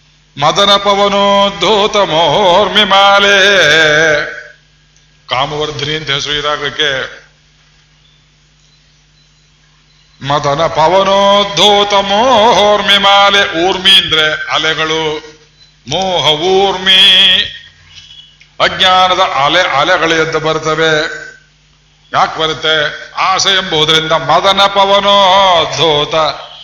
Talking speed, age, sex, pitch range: 45 wpm, 50-69, male, 150-195 Hz